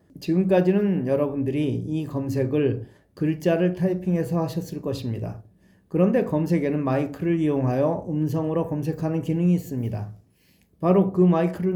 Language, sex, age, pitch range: Korean, male, 40-59, 130-180 Hz